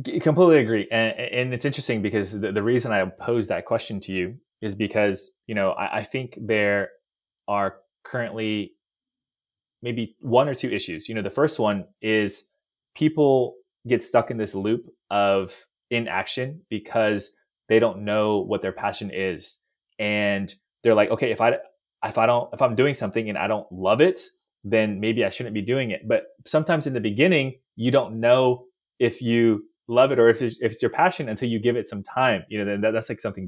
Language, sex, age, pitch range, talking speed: English, male, 20-39, 100-125 Hz, 195 wpm